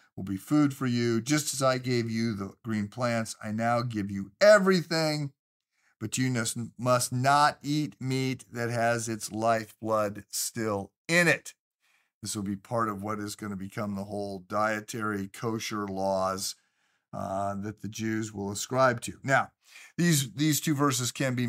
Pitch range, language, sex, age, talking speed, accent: 105-130 Hz, English, male, 50-69, 170 wpm, American